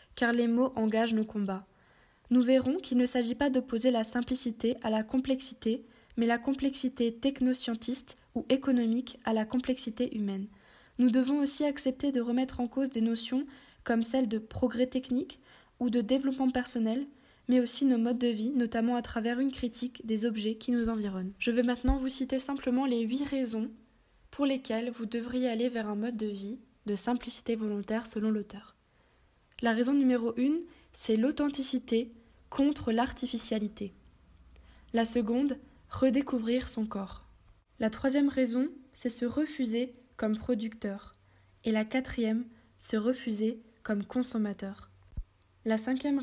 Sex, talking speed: female, 150 wpm